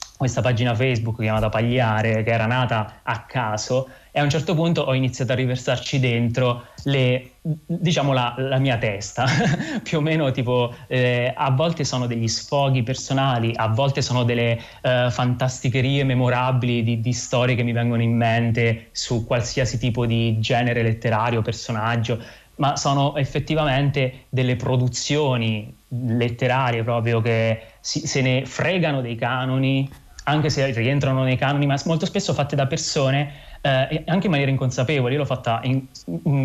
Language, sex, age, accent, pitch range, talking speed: Italian, male, 20-39, native, 120-140 Hz, 155 wpm